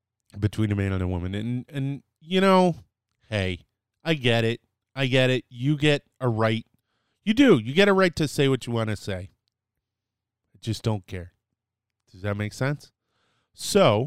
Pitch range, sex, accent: 105-140 Hz, male, American